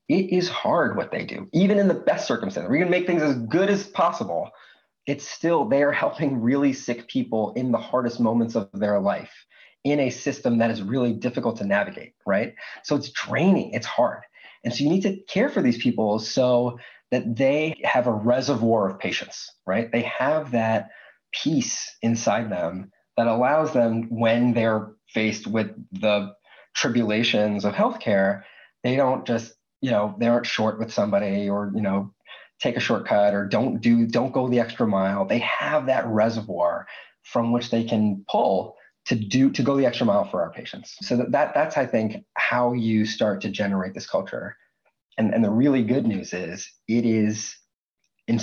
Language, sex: English, male